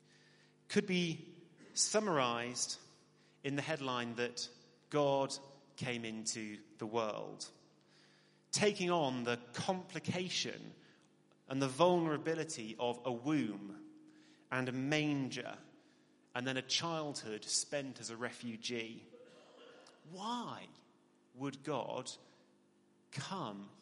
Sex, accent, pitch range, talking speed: male, British, 125-170 Hz, 95 wpm